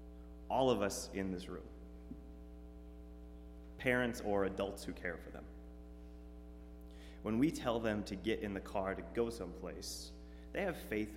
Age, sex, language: 30-49, male, English